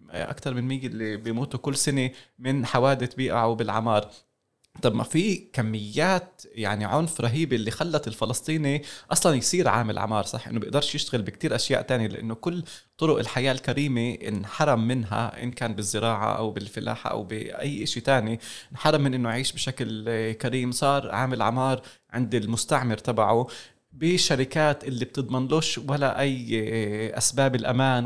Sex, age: male, 20-39